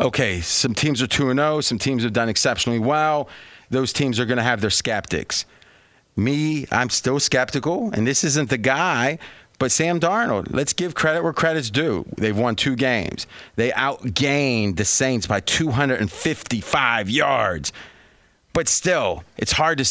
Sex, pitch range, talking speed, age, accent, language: male, 110-150 Hz, 160 wpm, 30-49, American, English